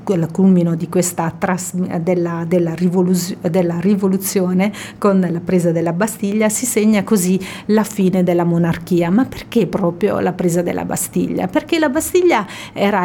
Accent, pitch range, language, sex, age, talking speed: native, 175-215 Hz, Italian, female, 40-59, 135 wpm